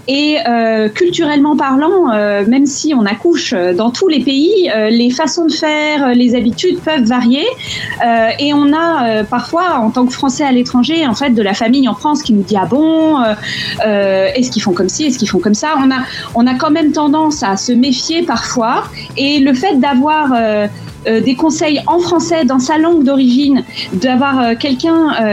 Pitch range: 235-295 Hz